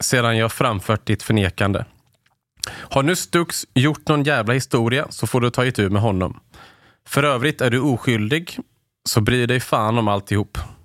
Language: English